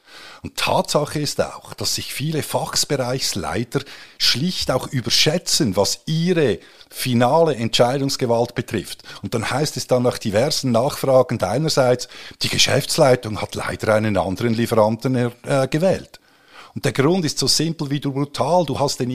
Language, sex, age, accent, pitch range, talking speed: German, male, 50-69, Austrian, 115-145 Hz, 140 wpm